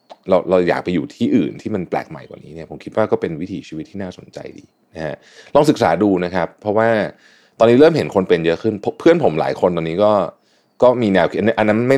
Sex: male